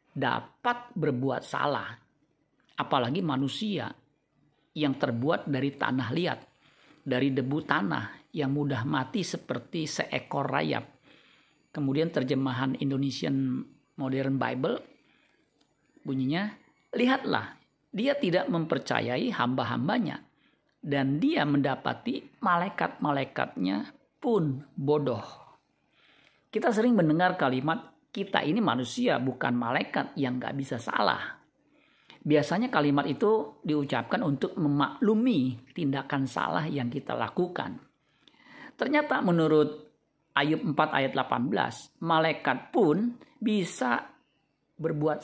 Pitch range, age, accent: 135-180 Hz, 50-69, native